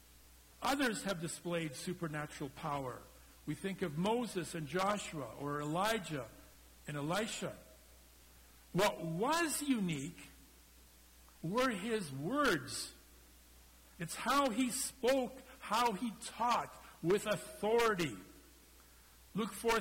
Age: 60-79